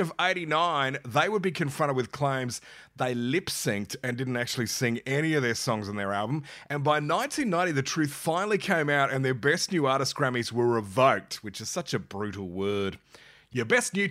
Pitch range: 135-195 Hz